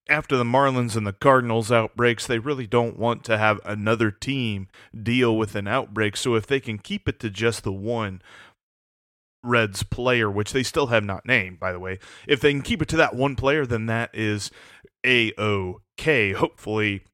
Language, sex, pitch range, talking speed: English, male, 110-130 Hz, 190 wpm